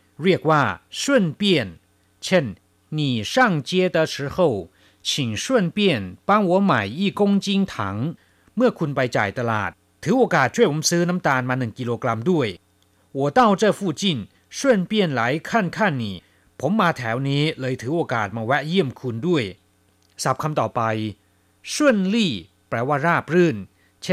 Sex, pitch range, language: male, 105-175 Hz, Chinese